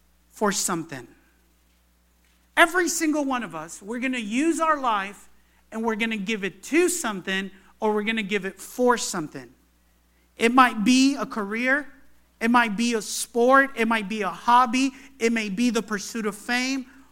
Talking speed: 180 wpm